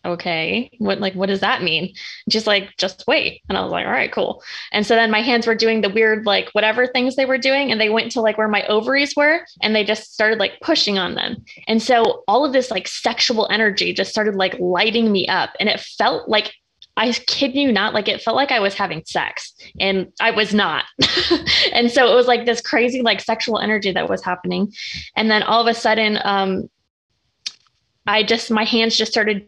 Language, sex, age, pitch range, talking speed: English, female, 20-39, 195-230 Hz, 220 wpm